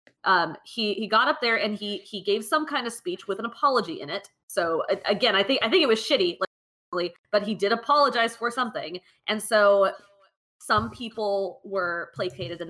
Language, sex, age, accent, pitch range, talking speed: English, female, 20-39, American, 190-275 Hz, 195 wpm